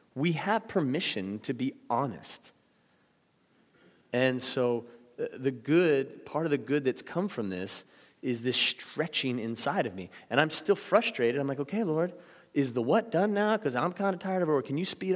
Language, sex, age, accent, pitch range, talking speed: English, male, 30-49, American, 110-140 Hz, 190 wpm